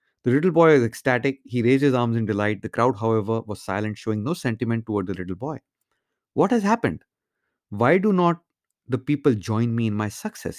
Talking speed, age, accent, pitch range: 205 wpm, 30-49, Indian, 110-145 Hz